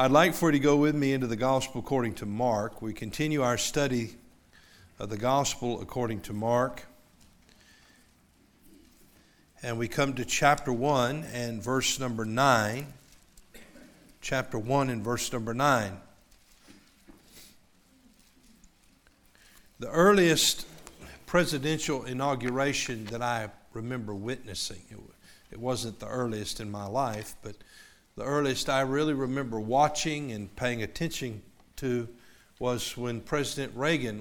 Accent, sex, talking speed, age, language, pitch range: American, male, 125 wpm, 50-69, English, 110-135 Hz